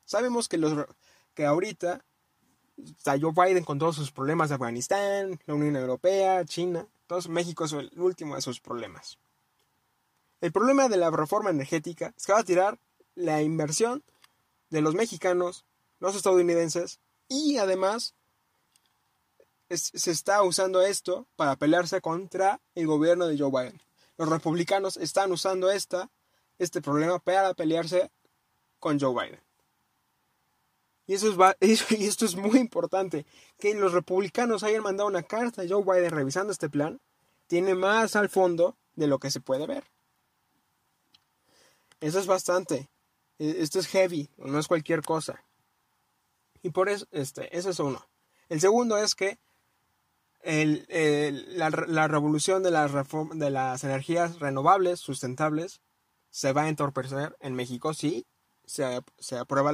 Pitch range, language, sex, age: 150-190 Hz, Spanish, male, 20-39